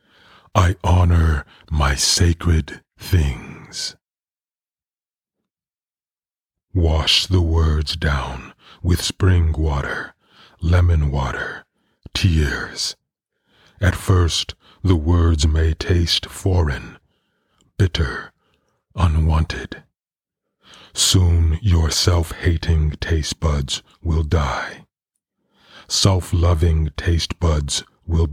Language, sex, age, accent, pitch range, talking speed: English, male, 40-59, American, 80-90 Hz, 75 wpm